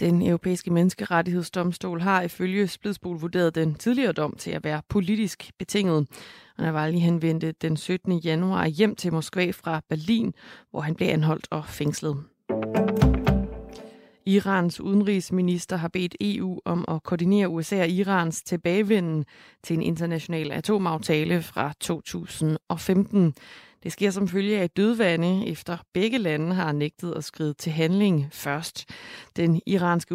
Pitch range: 160-190 Hz